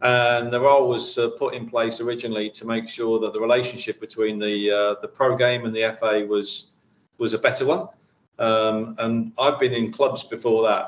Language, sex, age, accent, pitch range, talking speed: English, male, 40-59, British, 110-125 Hz, 205 wpm